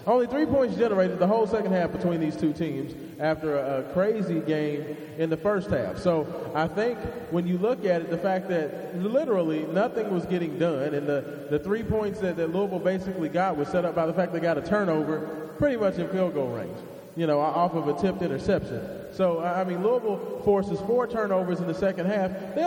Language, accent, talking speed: English, American, 215 wpm